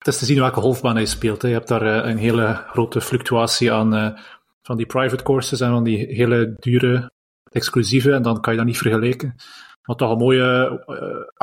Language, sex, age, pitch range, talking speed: Dutch, male, 30-49, 110-135 Hz, 215 wpm